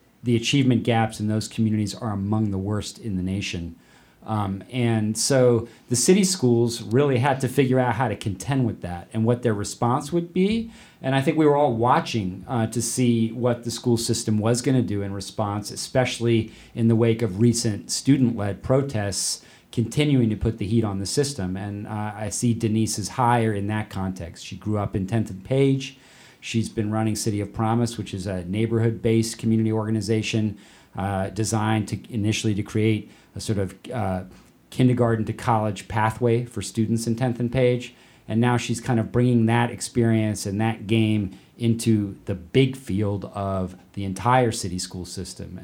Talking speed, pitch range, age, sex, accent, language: 185 wpm, 100-120 Hz, 40-59, male, American, English